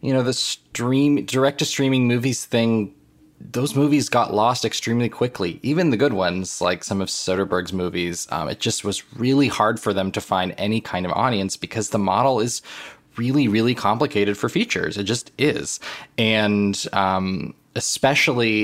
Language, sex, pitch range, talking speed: English, male, 100-125 Hz, 165 wpm